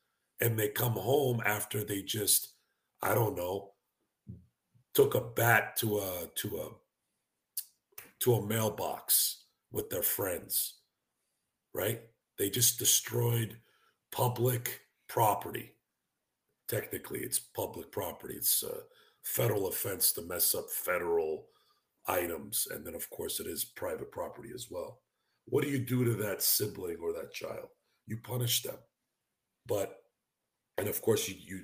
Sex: male